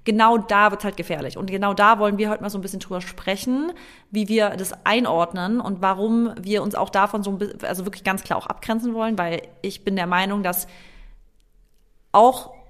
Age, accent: 30-49, German